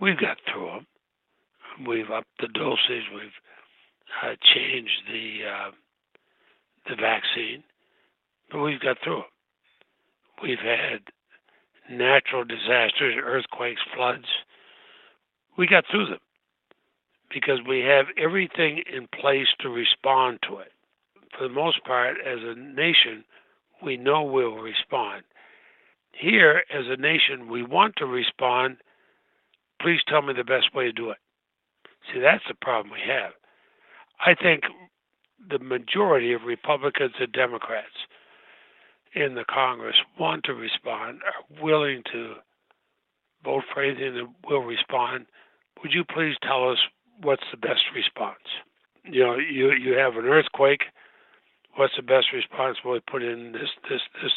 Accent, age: American, 60-79